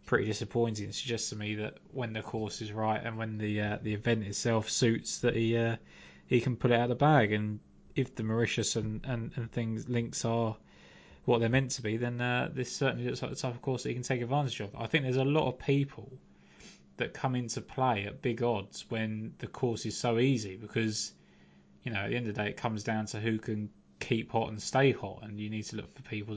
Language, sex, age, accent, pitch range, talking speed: English, male, 20-39, British, 105-125 Hz, 245 wpm